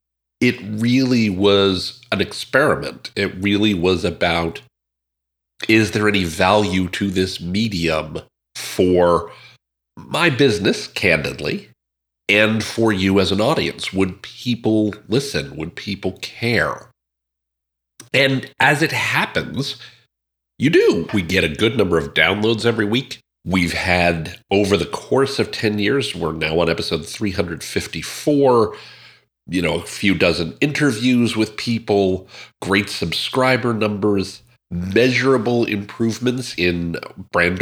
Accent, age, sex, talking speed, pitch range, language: American, 40-59, male, 120 wpm, 85-115 Hz, English